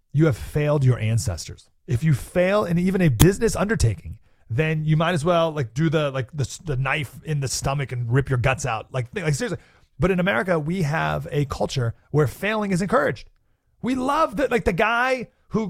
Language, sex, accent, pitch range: English, male, American, 120-185 Hz